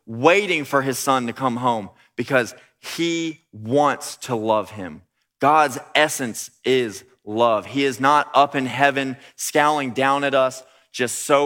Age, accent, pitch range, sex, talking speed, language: 20-39, American, 125-160 Hz, male, 150 wpm, English